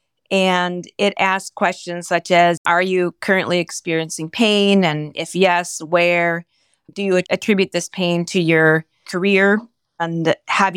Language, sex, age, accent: English, female, 30-49, American